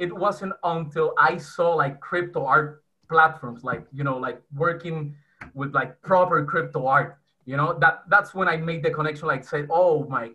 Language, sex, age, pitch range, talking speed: English, male, 20-39, 150-180 Hz, 185 wpm